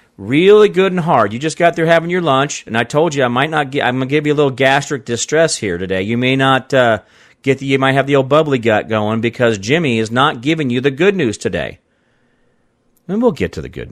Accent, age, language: American, 40-59, English